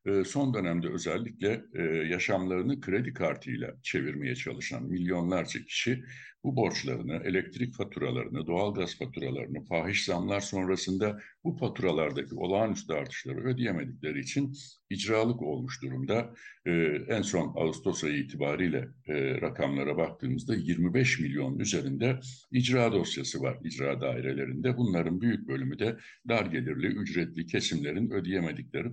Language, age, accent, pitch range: Turkish, 60-79, native, 90-130 Hz